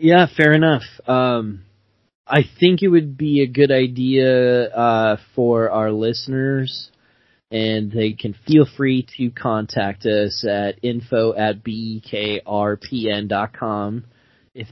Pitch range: 105-125 Hz